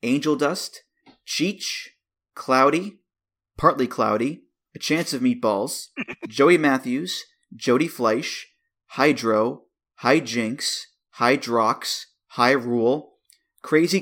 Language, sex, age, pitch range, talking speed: English, male, 30-49, 130-185 Hz, 85 wpm